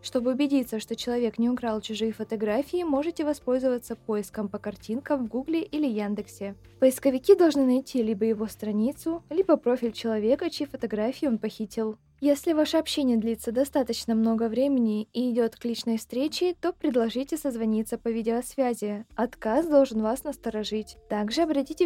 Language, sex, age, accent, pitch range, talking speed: Russian, female, 20-39, native, 225-275 Hz, 145 wpm